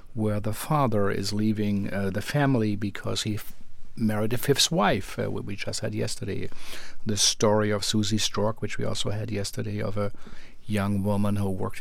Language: English